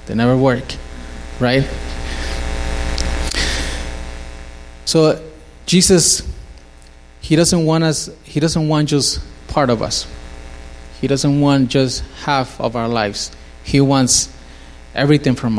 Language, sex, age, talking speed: English, male, 30-49, 110 wpm